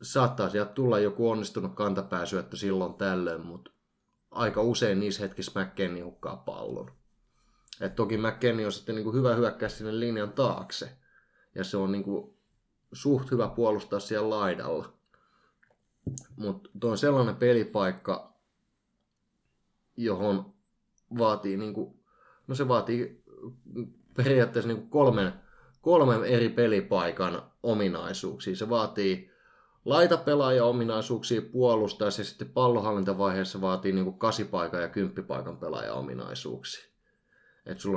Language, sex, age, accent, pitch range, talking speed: Finnish, male, 20-39, native, 95-120 Hz, 120 wpm